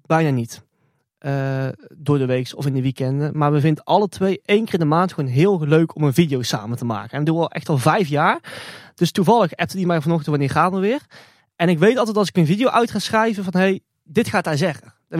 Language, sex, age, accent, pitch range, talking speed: Dutch, male, 20-39, Dutch, 145-180 Hz, 255 wpm